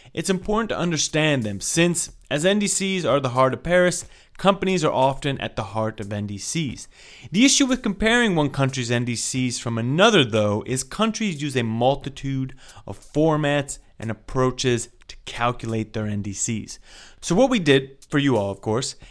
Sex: male